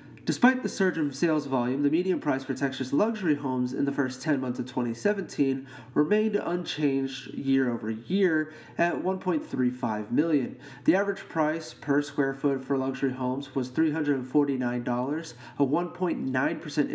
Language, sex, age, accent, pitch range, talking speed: English, male, 30-49, American, 130-170 Hz, 145 wpm